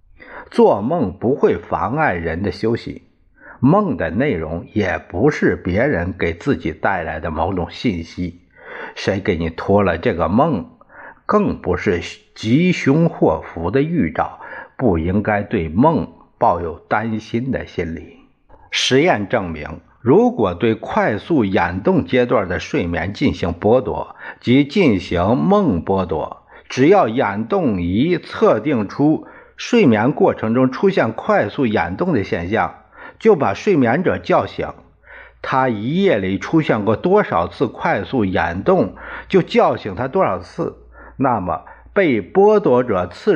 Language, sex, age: Chinese, male, 50-69